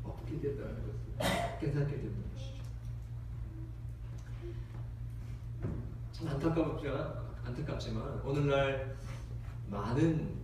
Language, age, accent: Korean, 40-59, native